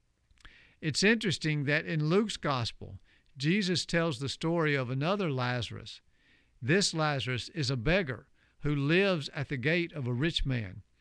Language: English